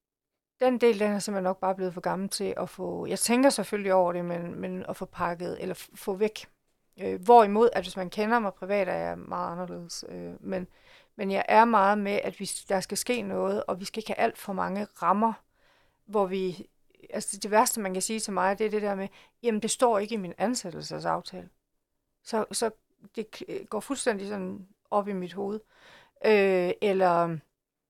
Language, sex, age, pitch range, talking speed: Danish, female, 40-59, 185-225 Hz, 195 wpm